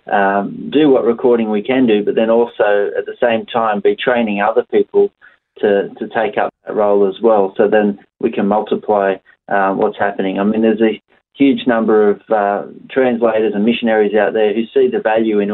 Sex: male